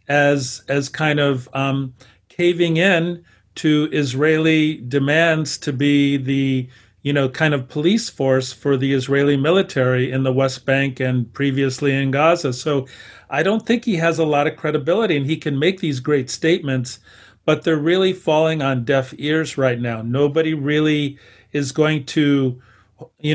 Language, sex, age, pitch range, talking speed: English, male, 40-59, 130-155 Hz, 160 wpm